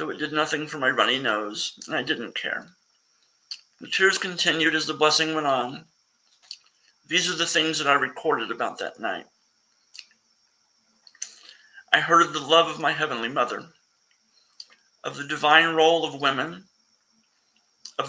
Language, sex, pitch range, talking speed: English, male, 155-175 Hz, 155 wpm